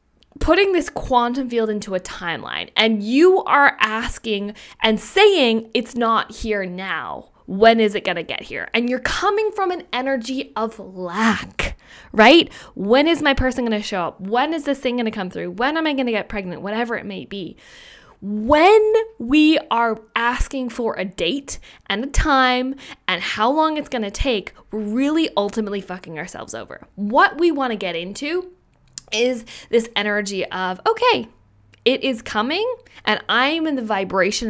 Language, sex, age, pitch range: English, female, 10-29, 205-275 Hz